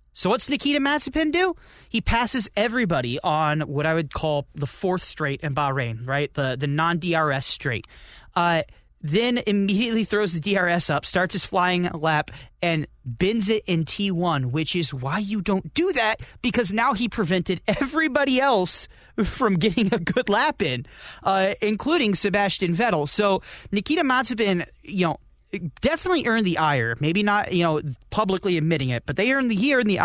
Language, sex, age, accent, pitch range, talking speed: English, male, 30-49, American, 145-210 Hz, 170 wpm